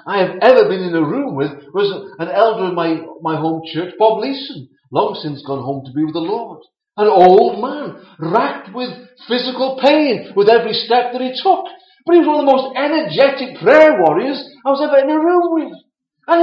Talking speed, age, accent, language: 210 wpm, 40-59, British, English